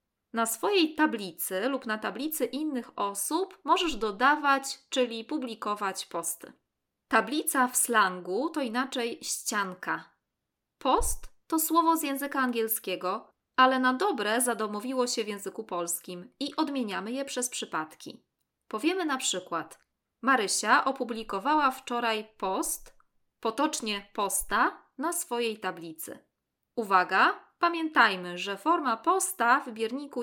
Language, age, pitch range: Polish, 20-39, 210-290 Hz